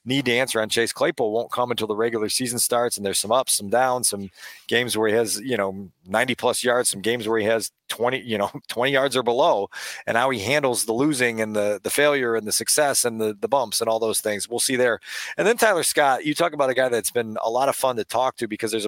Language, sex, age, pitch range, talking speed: English, male, 40-59, 115-135 Hz, 270 wpm